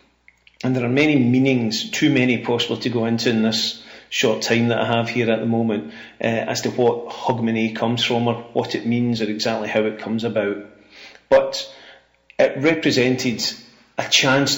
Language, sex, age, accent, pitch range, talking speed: English, male, 40-59, British, 120-135 Hz, 180 wpm